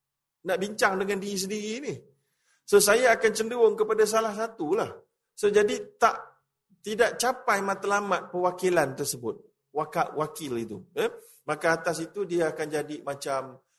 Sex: male